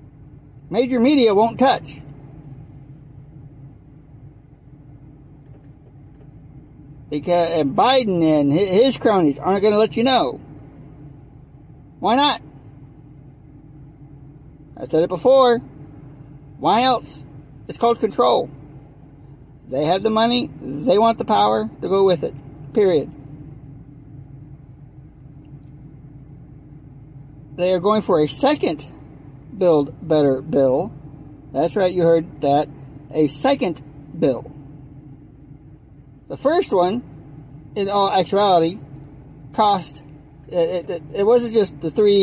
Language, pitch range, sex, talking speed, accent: English, 140-175 Hz, male, 100 wpm, American